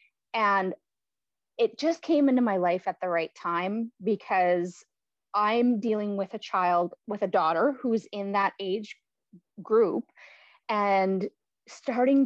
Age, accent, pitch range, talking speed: 30-49, American, 200-255 Hz, 130 wpm